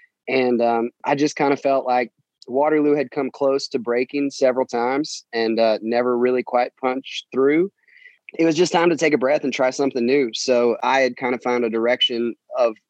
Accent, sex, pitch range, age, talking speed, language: American, male, 110-130 Hz, 20-39, 205 wpm, English